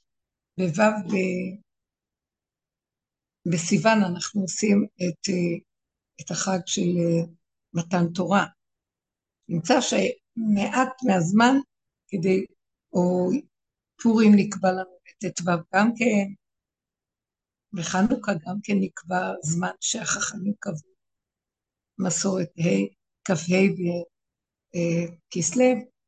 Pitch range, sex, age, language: 180-230 Hz, female, 60-79, Hebrew